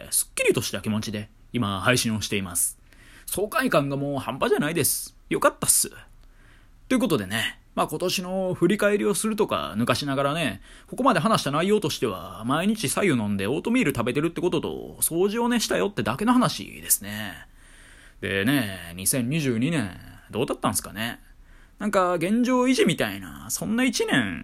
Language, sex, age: Japanese, male, 20-39